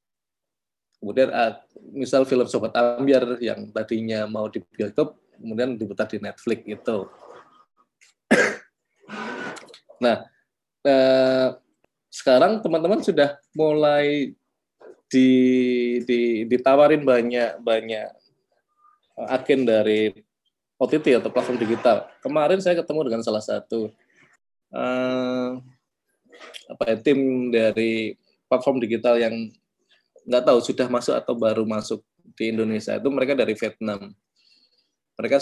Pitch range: 110-130 Hz